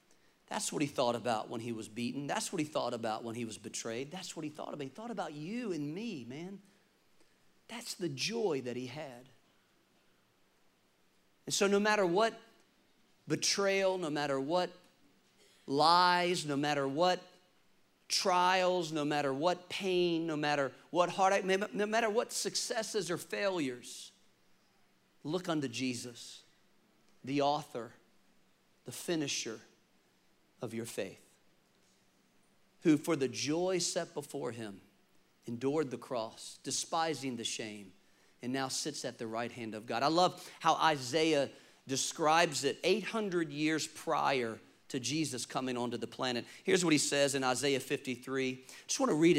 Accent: American